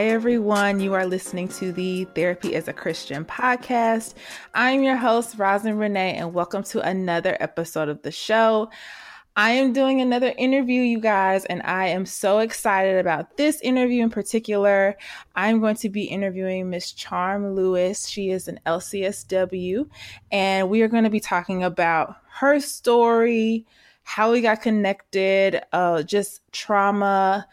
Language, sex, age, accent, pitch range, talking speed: English, female, 20-39, American, 175-225 Hz, 160 wpm